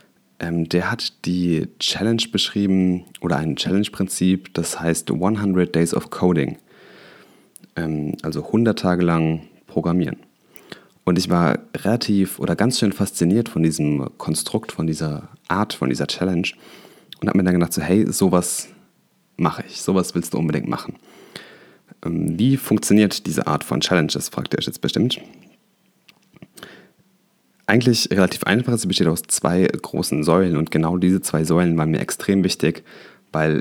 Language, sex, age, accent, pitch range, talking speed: German, male, 30-49, German, 80-95 Hz, 145 wpm